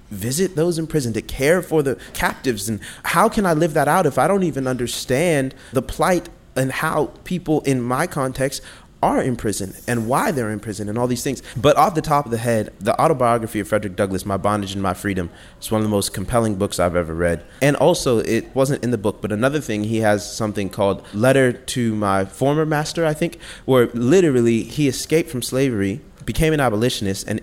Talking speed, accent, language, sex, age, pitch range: 215 wpm, American, English, male, 30-49, 105-155 Hz